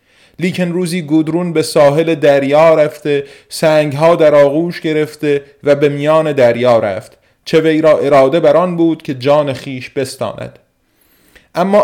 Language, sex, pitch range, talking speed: Persian, male, 135-175 Hz, 140 wpm